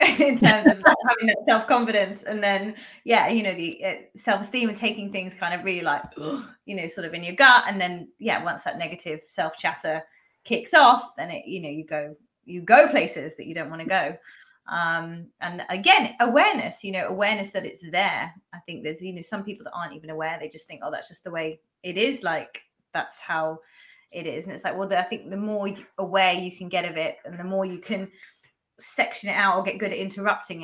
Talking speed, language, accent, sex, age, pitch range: 225 wpm, English, British, female, 20-39, 170-210 Hz